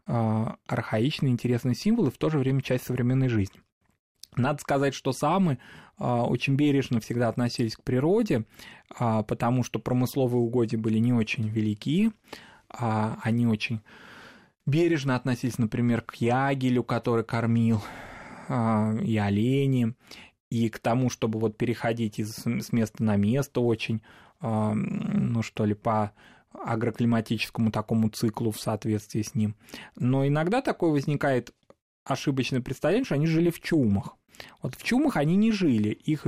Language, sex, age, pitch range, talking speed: Russian, male, 20-39, 115-150 Hz, 130 wpm